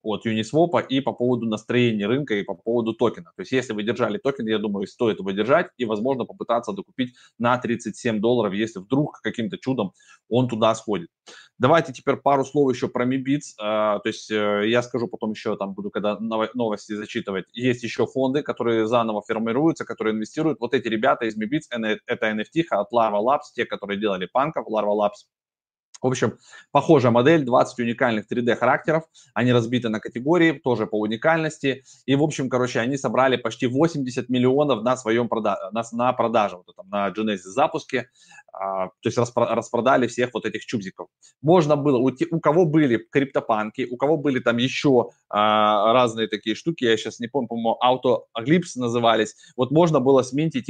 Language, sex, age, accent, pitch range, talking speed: Russian, male, 20-39, native, 110-140 Hz, 170 wpm